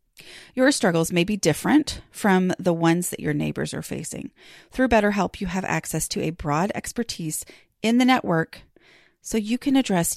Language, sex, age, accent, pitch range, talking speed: English, female, 30-49, American, 170-235 Hz, 170 wpm